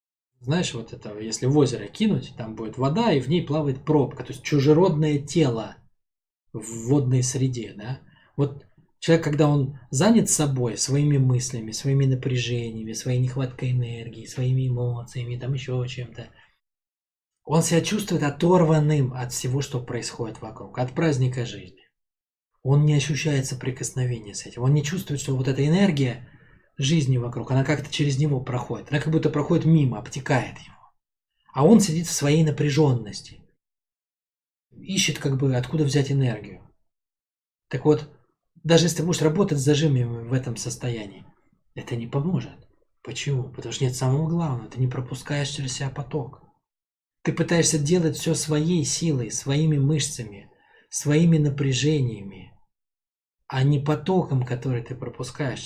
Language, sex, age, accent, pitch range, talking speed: Russian, male, 20-39, native, 120-150 Hz, 145 wpm